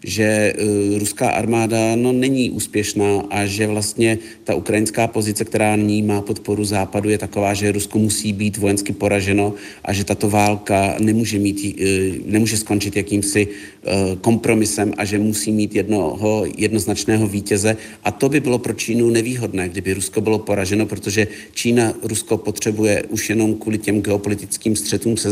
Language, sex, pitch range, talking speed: Czech, male, 100-110 Hz, 160 wpm